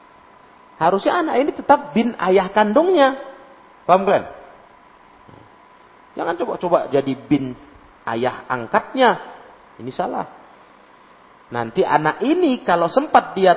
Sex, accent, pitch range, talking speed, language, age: male, native, 110-175 Hz, 100 wpm, Indonesian, 40-59